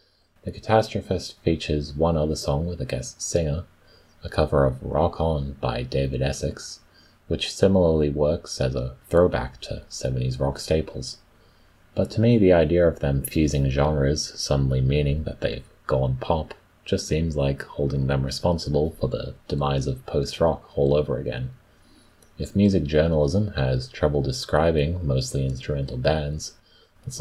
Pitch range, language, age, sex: 70-85 Hz, English, 30-49, male